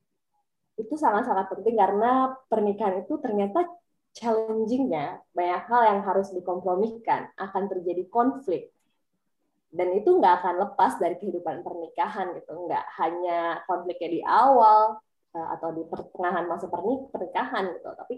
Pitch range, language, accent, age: 180-245 Hz, Indonesian, native, 20-39